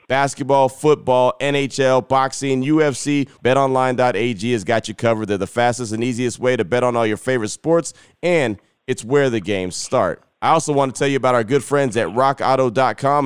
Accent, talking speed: American, 185 wpm